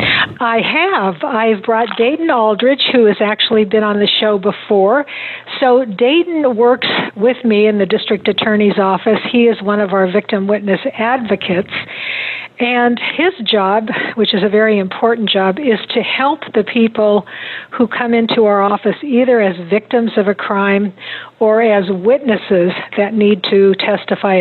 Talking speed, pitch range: 155 wpm, 195-230 Hz